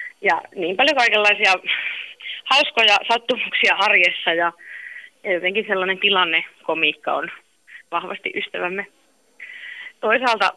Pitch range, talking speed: 170-245 Hz, 90 wpm